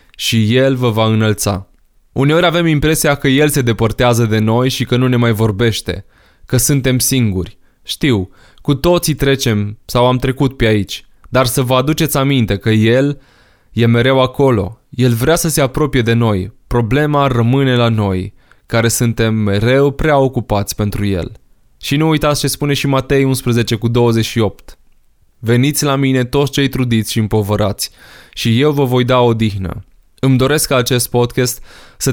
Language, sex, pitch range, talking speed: Romanian, male, 110-135 Hz, 170 wpm